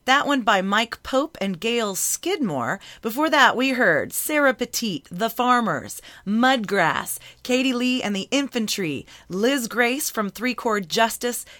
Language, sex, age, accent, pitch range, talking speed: English, female, 30-49, American, 190-245 Hz, 145 wpm